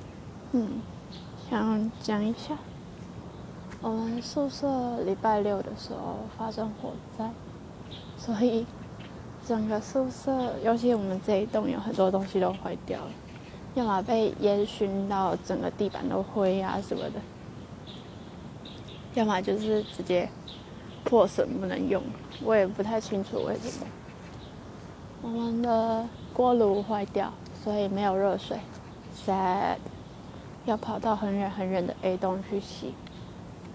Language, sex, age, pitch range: Chinese, female, 20-39, 200-235 Hz